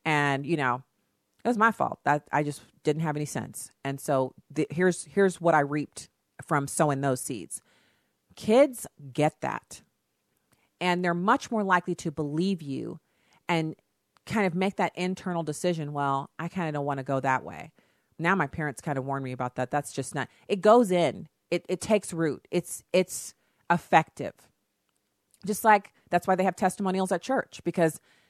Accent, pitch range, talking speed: American, 140-185 Hz, 180 wpm